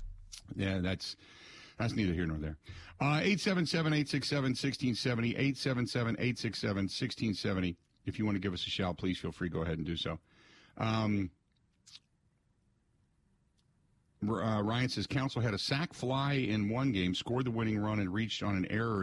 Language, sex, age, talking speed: English, male, 50-69, 205 wpm